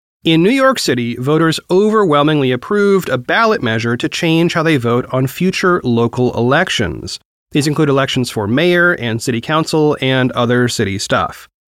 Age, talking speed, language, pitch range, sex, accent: 30-49, 160 wpm, English, 125-185 Hz, male, American